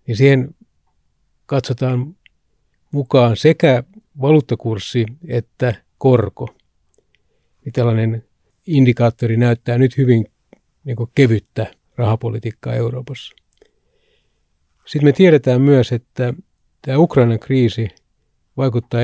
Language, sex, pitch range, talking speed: Finnish, male, 110-130 Hz, 80 wpm